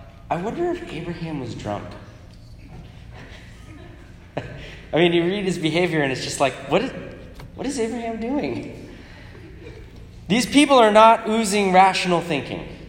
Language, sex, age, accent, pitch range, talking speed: English, male, 20-39, American, 110-165 Hz, 135 wpm